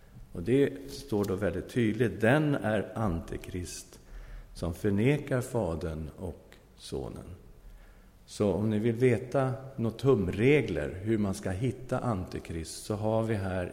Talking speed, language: 130 wpm, Swedish